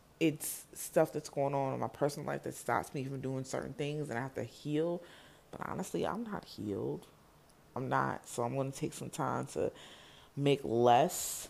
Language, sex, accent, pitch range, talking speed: English, female, American, 125-150 Hz, 200 wpm